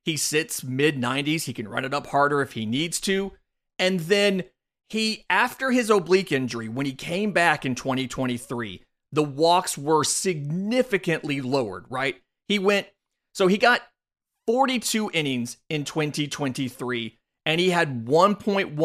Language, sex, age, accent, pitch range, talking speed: English, male, 30-49, American, 130-190 Hz, 130 wpm